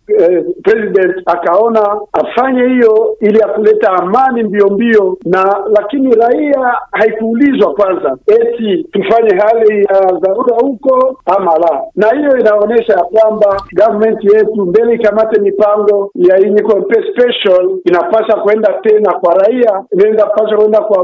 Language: Swahili